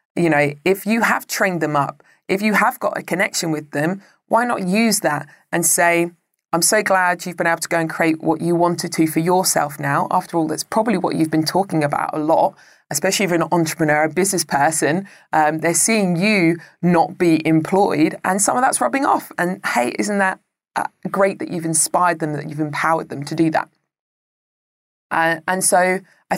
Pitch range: 155-185 Hz